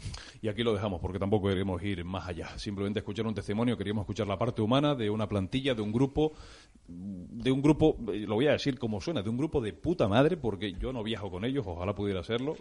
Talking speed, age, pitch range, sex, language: 235 wpm, 30-49, 100-130 Hz, male, Spanish